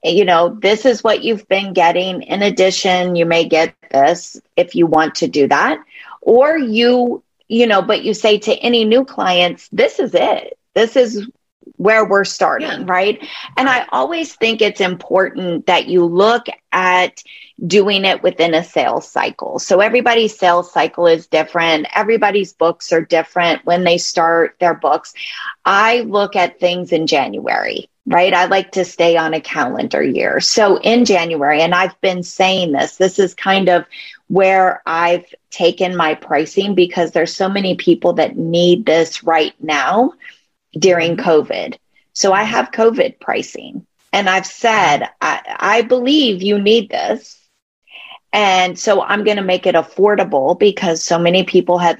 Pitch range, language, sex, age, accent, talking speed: 170-215 Hz, English, female, 30-49, American, 165 wpm